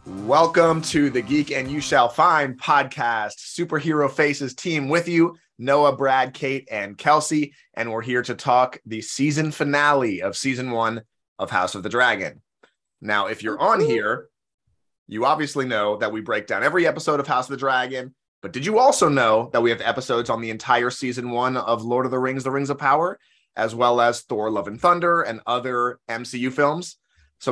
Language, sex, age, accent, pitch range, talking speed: English, male, 30-49, American, 115-145 Hz, 195 wpm